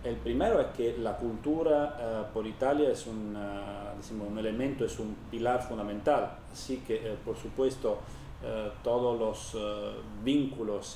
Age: 30-49